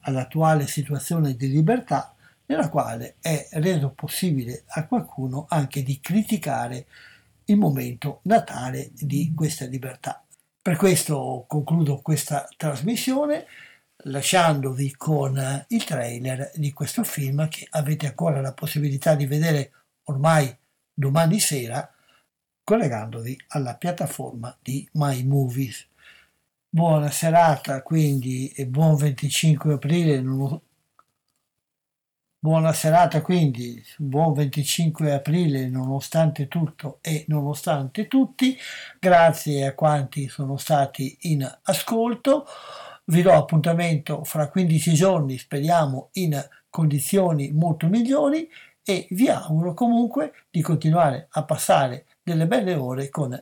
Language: Italian